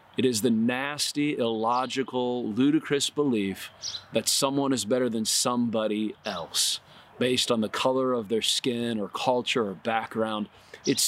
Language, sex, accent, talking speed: English, male, American, 140 wpm